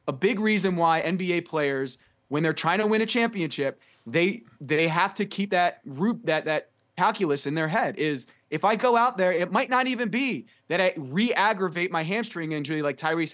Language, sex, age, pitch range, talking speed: English, male, 20-39, 150-205 Hz, 200 wpm